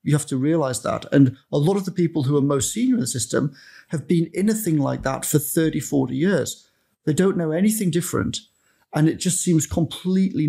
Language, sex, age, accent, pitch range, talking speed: English, male, 40-59, British, 120-170 Hz, 225 wpm